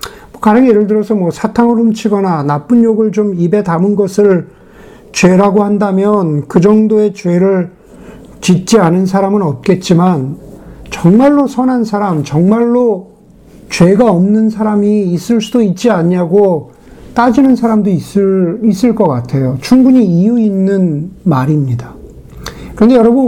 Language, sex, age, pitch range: Korean, male, 50-69, 180-230 Hz